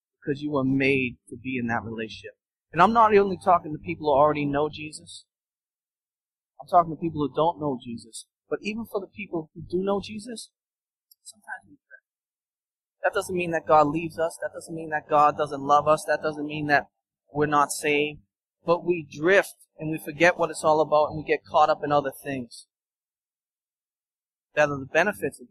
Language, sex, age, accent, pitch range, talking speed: English, male, 30-49, American, 135-165 Hz, 200 wpm